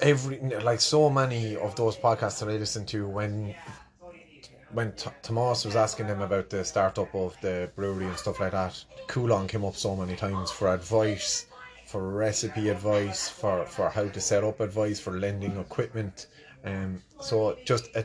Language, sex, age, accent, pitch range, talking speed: English, male, 30-49, Irish, 95-115 Hz, 175 wpm